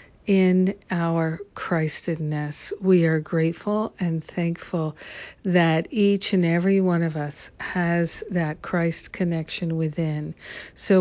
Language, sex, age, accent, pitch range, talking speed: English, female, 60-79, American, 165-185 Hz, 115 wpm